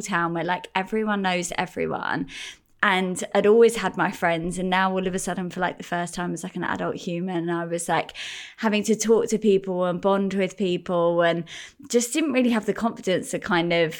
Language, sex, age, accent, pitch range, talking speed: English, female, 20-39, British, 170-205 Hz, 225 wpm